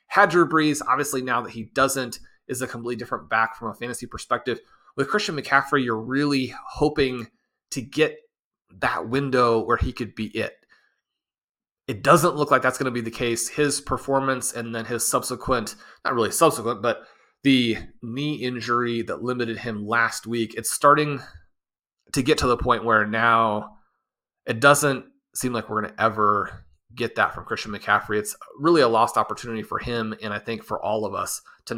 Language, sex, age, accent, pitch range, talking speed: English, male, 30-49, American, 115-135 Hz, 185 wpm